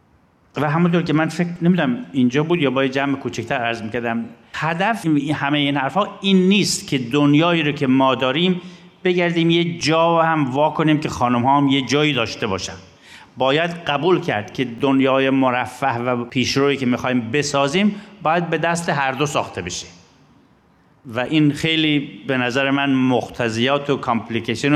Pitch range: 120-155 Hz